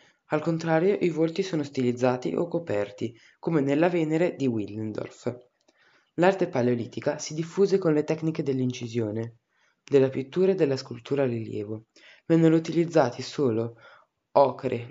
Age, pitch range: 20-39, 120-165 Hz